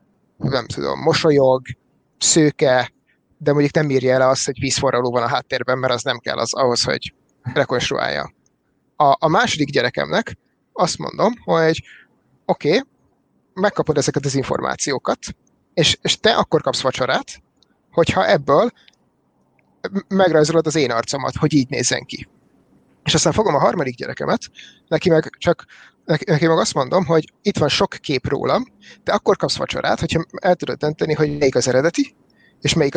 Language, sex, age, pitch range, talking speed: Hungarian, male, 30-49, 130-160 Hz, 155 wpm